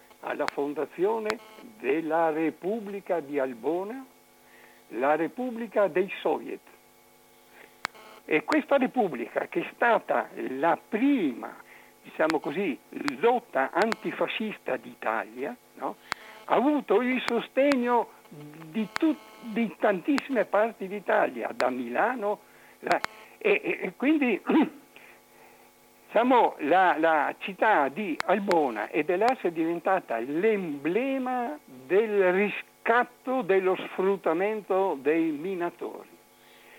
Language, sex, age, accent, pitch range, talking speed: Italian, male, 60-79, native, 165-245 Hz, 95 wpm